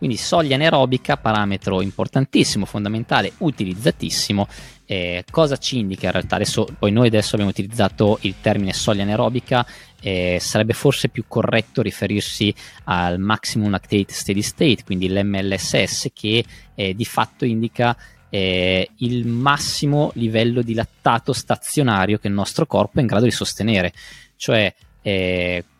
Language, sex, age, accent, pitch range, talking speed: Italian, male, 20-39, native, 100-125 Hz, 135 wpm